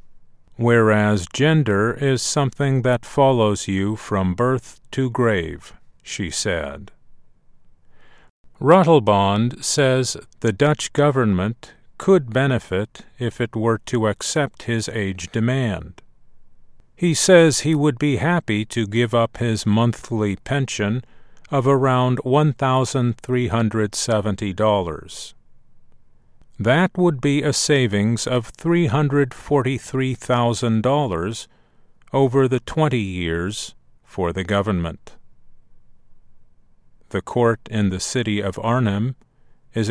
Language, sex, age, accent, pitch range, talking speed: English, male, 50-69, American, 105-140 Hz, 100 wpm